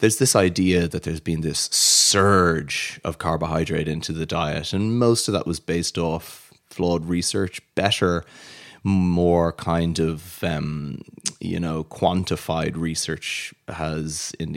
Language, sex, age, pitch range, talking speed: English, male, 30-49, 80-90 Hz, 135 wpm